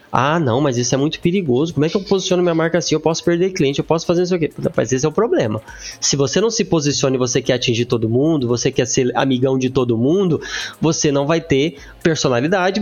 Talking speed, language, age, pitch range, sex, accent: 245 wpm, Portuguese, 20-39, 135-185 Hz, male, Brazilian